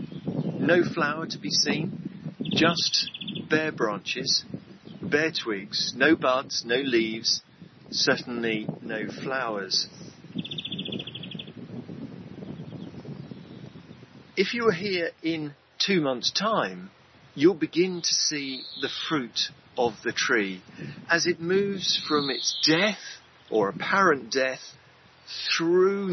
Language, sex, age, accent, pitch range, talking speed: English, male, 50-69, British, 125-180 Hz, 100 wpm